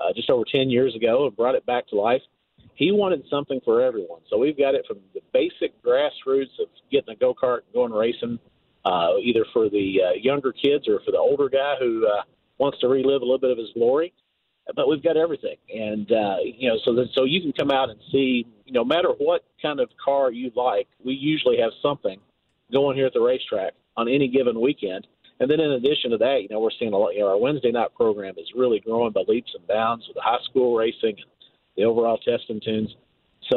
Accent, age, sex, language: American, 40-59, male, English